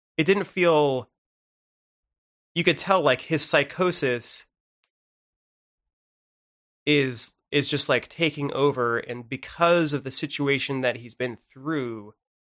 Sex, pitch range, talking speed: male, 120-165 Hz, 115 wpm